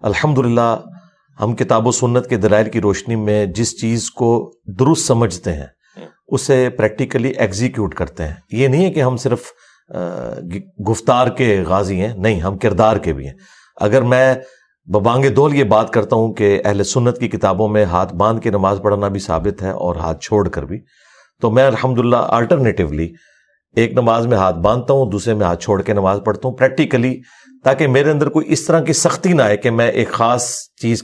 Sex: male